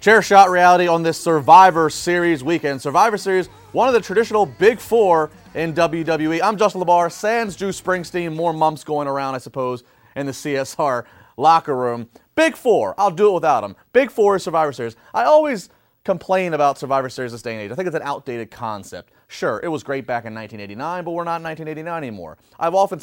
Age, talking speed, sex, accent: 30-49, 205 wpm, male, American